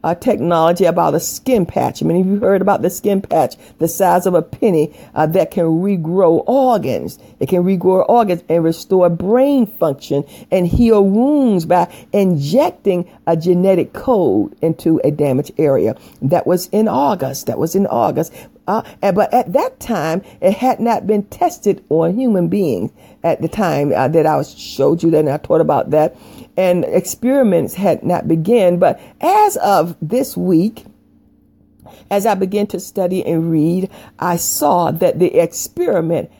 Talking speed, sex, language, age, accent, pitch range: 165 wpm, female, English, 50-69, American, 170-225 Hz